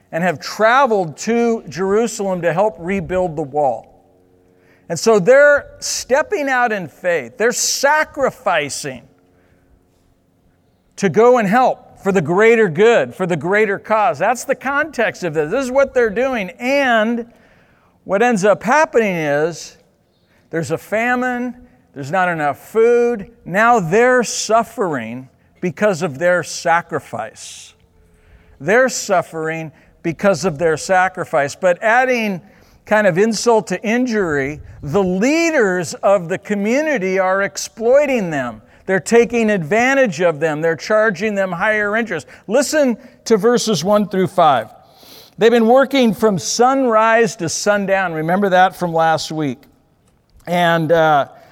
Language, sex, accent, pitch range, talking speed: English, male, American, 165-235 Hz, 130 wpm